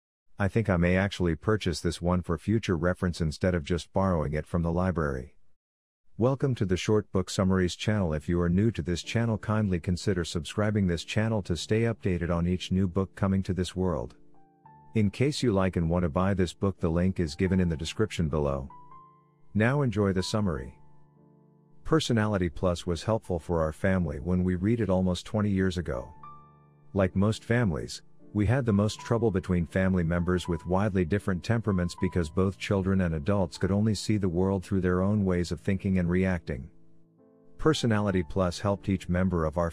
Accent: American